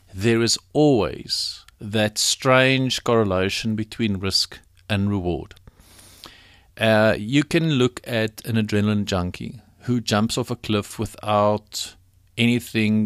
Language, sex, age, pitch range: English, male, 50-69, 95-115 Hz